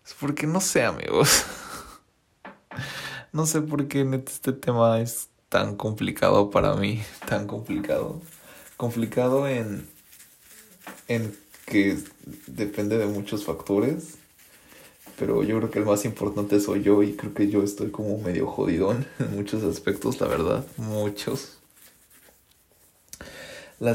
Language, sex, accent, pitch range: English, male, Mexican, 100-125 Hz